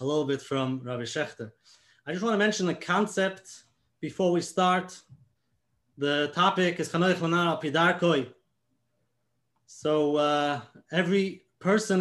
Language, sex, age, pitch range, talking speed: English, male, 30-49, 135-180 Hz, 115 wpm